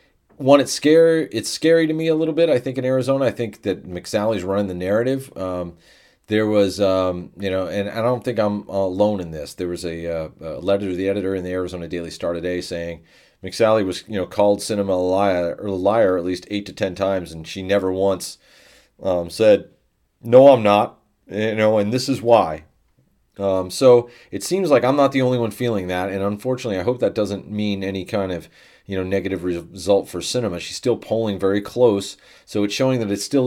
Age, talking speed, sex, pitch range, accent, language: 40-59, 215 wpm, male, 95-110 Hz, American, English